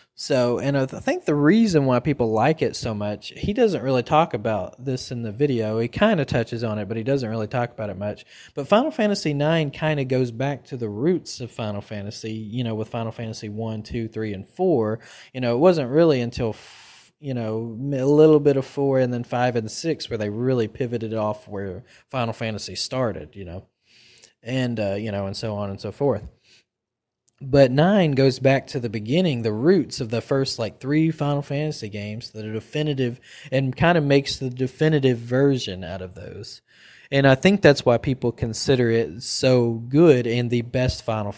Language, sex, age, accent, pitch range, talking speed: English, male, 20-39, American, 110-140 Hz, 205 wpm